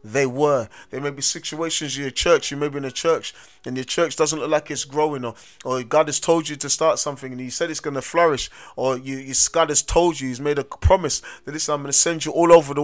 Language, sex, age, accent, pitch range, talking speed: English, male, 30-49, British, 140-170 Hz, 270 wpm